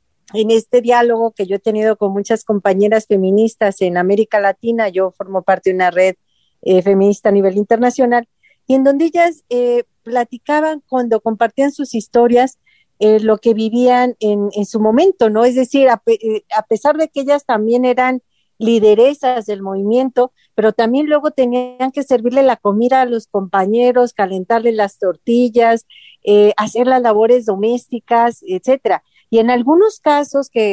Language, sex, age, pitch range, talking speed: Spanish, female, 40-59, 205-250 Hz, 160 wpm